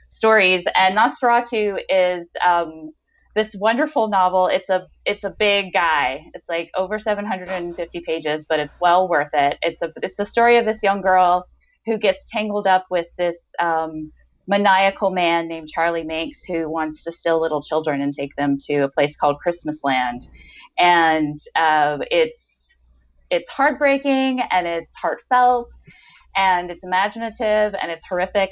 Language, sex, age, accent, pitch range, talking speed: English, female, 20-39, American, 160-210 Hz, 155 wpm